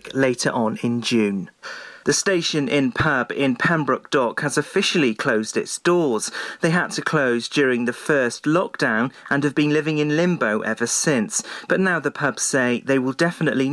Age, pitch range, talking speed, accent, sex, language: 40-59, 125-165 Hz, 170 wpm, British, male, English